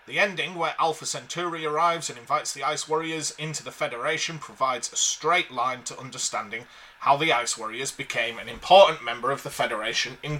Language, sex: English, male